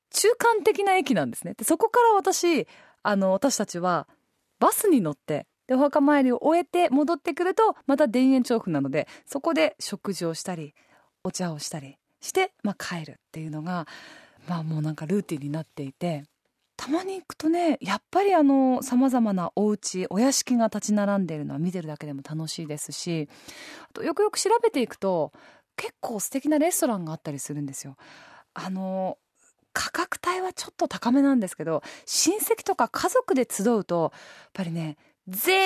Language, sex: Japanese, female